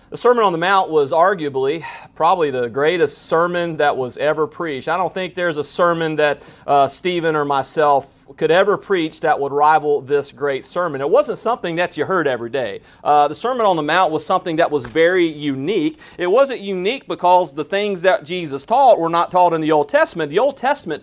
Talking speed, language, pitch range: 210 wpm, English, 155-210 Hz